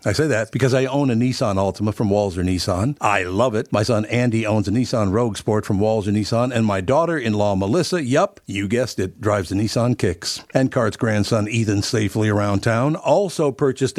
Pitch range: 105-130 Hz